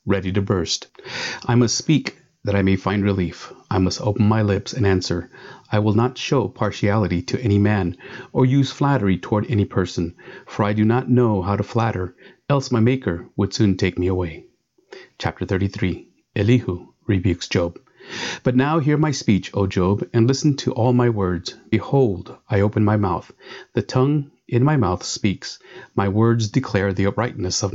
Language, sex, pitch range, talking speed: English, male, 95-125 Hz, 180 wpm